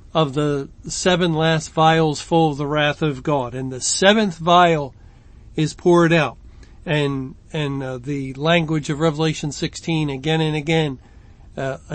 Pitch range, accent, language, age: 140-170 Hz, American, English, 50-69